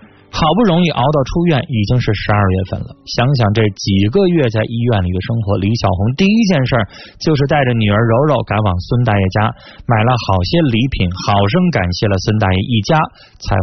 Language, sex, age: Chinese, male, 20-39